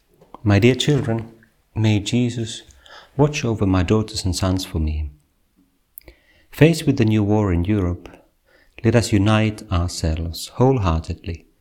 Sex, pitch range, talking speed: male, 85-110 Hz, 130 wpm